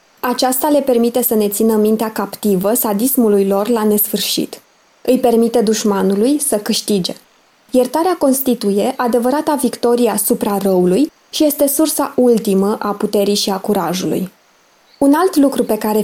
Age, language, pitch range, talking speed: 20-39, Romanian, 210-270 Hz, 140 wpm